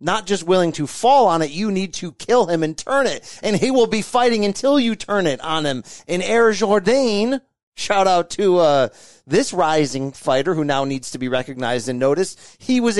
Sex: male